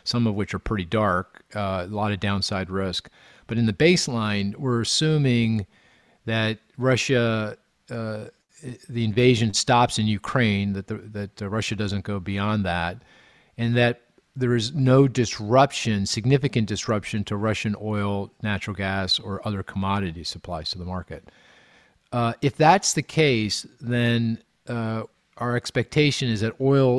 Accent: American